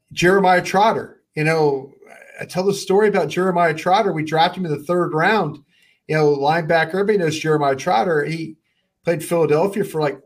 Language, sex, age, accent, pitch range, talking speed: English, male, 40-59, American, 150-190 Hz, 175 wpm